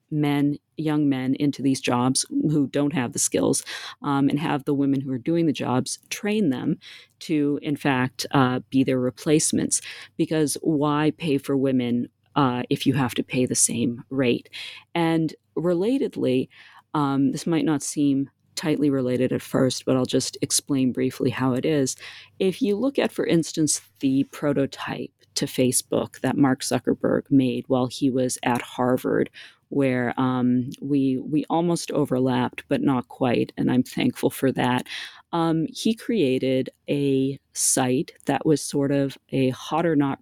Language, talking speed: English, 165 wpm